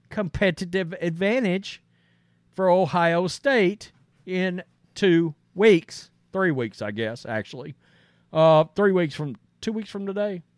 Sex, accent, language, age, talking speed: male, American, English, 40-59, 120 wpm